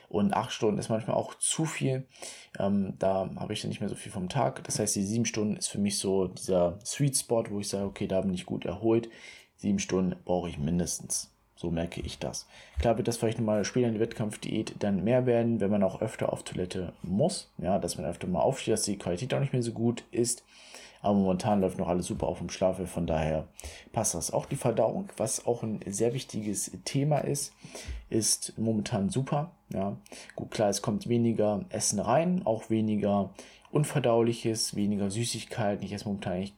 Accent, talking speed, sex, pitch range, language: German, 205 wpm, male, 95-115 Hz, German